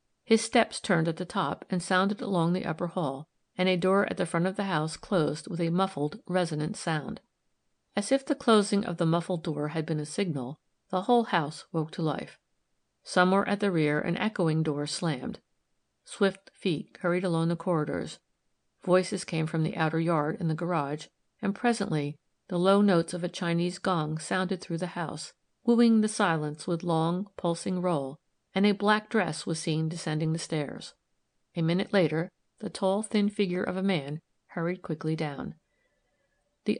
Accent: American